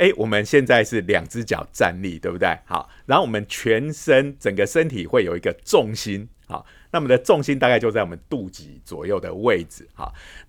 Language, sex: Chinese, male